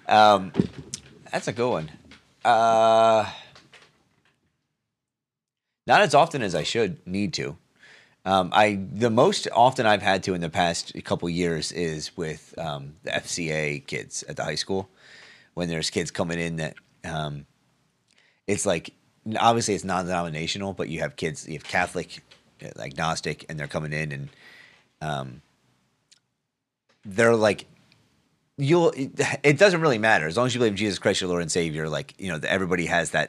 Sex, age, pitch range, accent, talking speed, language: male, 30-49, 80-105 Hz, American, 160 wpm, English